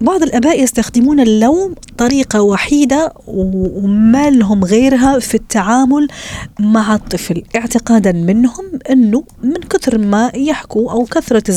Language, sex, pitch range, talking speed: Arabic, female, 175-240 Hz, 110 wpm